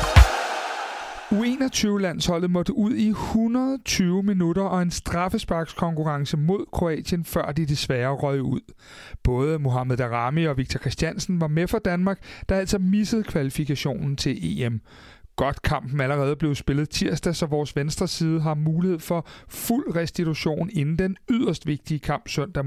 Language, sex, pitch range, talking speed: Danish, male, 135-180 Hz, 140 wpm